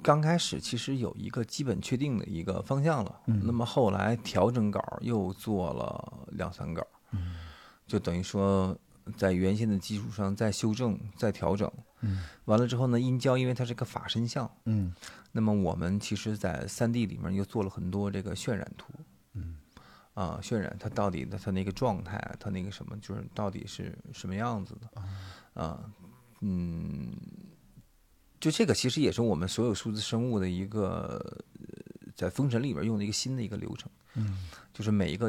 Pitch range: 95-115 Hz